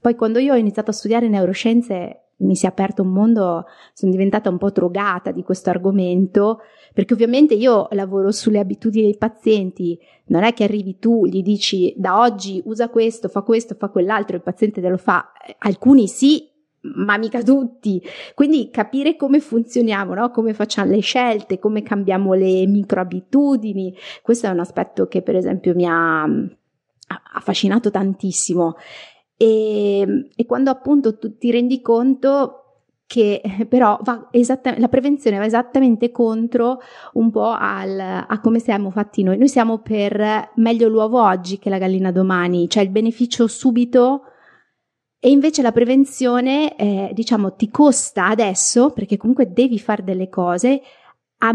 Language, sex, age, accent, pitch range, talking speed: Italian, female, 30-49, native, 195-245 Hz, 155 wpm